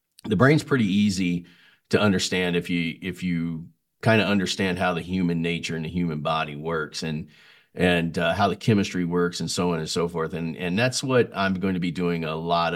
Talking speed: 215 wpm